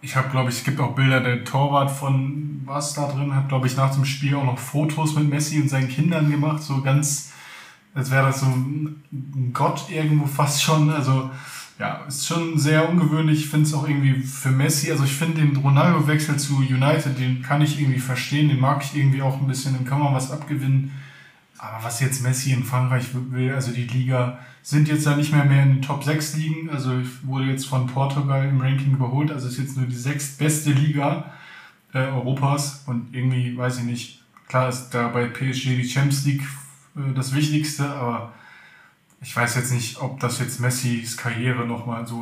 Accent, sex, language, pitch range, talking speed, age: German, male, German, 130-145 Hz, 205 wpm, 20-39